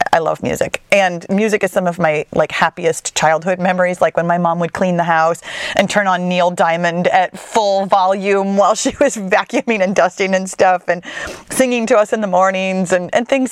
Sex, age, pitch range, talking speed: female, 30-49, 185-280 Hz, 210 wpm